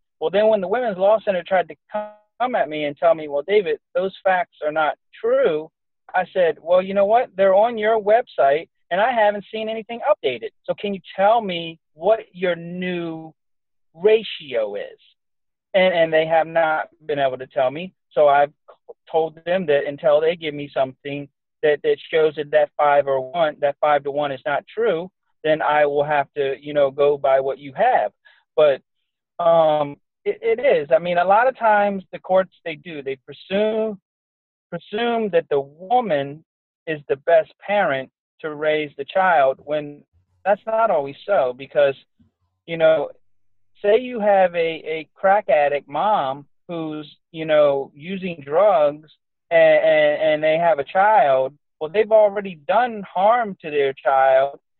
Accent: American